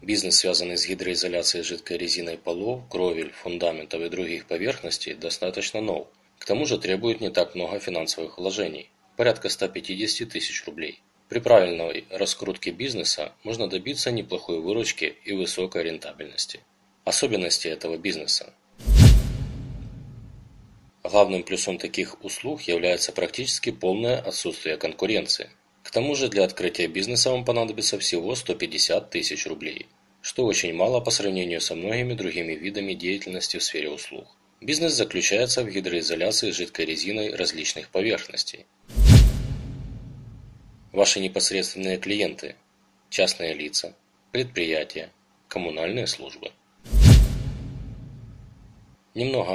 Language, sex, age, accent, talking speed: Russian, male, 20-39, native, 115 wpm